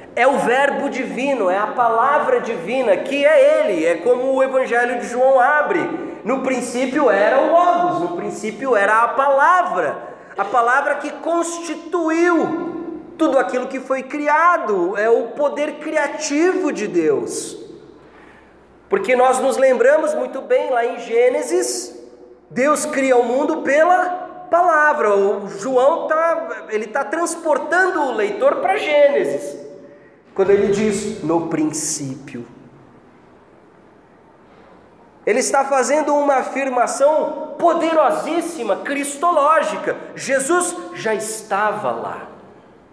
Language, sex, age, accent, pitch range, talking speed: Portuguese, male, 40-59, Brazilian, 230-330 Hz, 115 wpm